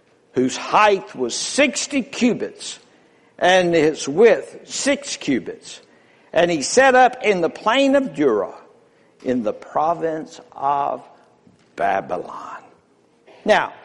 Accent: American